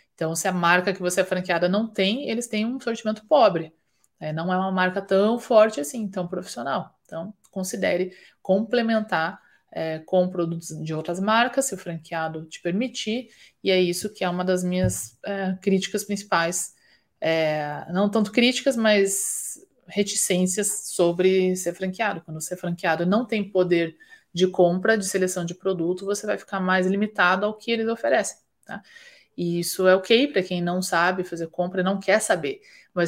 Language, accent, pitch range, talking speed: Portuguese, Brazilian, 175-215 Hz, 165 wpm